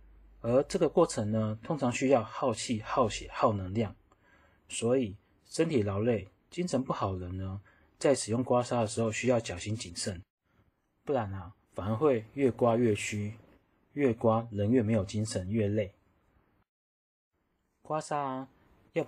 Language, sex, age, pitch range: Chinese, male, 30-49, 100-125 Hz